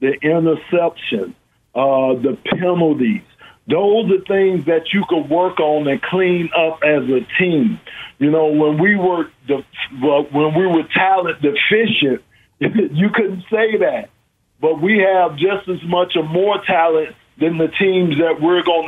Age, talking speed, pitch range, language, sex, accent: 50-69, 145 wpm, 160-195 Hz, English, male, American